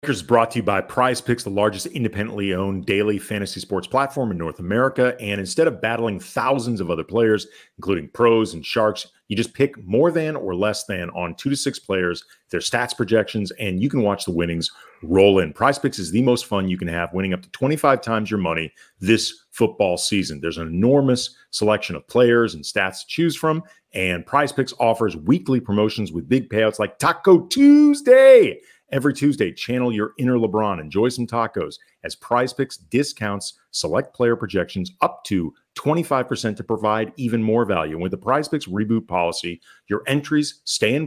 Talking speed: 190 wpm